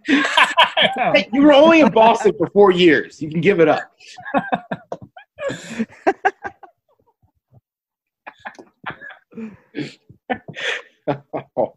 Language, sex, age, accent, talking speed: English, male, 30-49, American, 70 wpm